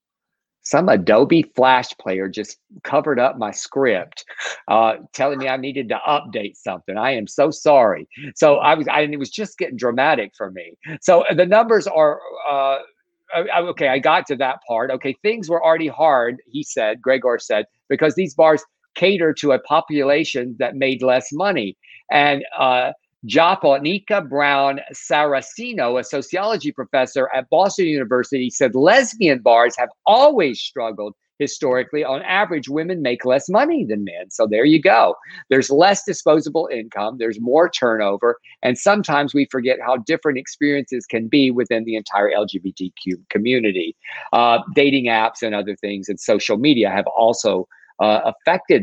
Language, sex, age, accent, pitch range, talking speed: English, male, 50-69, American, 120-160 Hz, 155 wpm